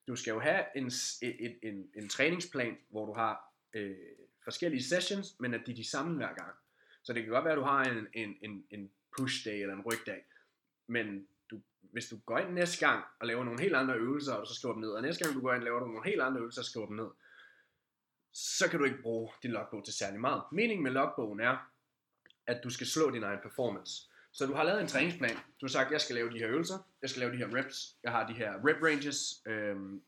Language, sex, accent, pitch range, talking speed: Danish, male, native, 115-145 Hz, 250 wpm